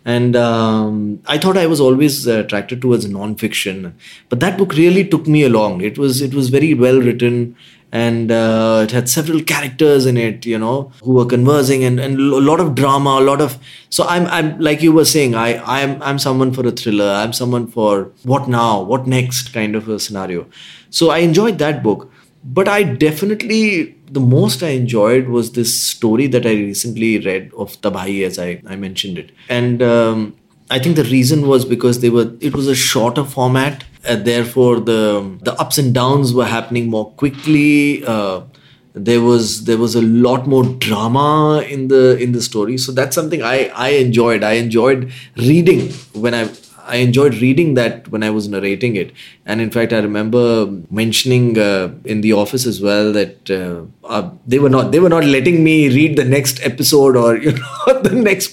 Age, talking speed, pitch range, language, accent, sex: 20-39, 195 wpm, 115-150 Hz, Hindi, native, male